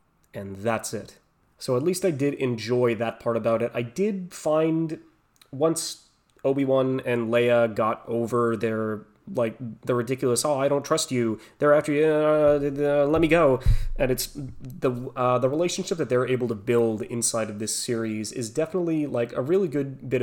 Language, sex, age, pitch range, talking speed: English, male, 20-39, 115-145 Hz, 175 wpm